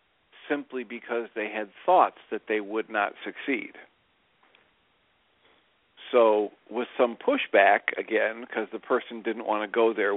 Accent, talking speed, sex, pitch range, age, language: American, 135 wpm, male, 105-125 Hz, 50-69, English